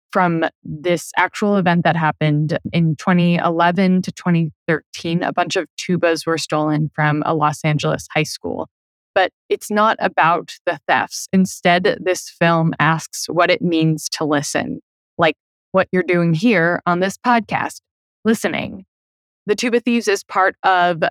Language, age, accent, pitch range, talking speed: English, 20-39, American, 165-190 Hz, 150 wpm